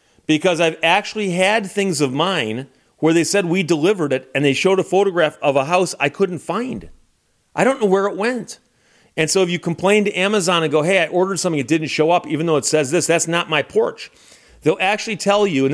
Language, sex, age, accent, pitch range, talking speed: English, male, 40-59, American, 140-190 Hz, 235 wpm